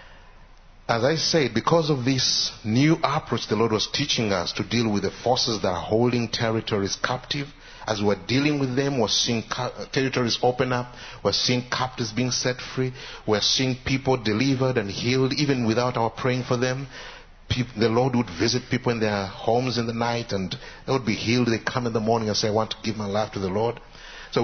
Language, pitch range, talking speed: Spanish, 110-130 Hz, 220 wpm